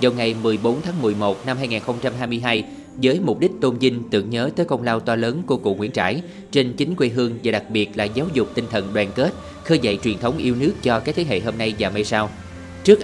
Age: 20-39